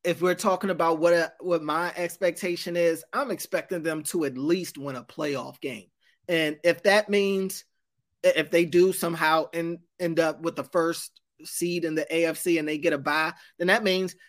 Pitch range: 160-195 Hz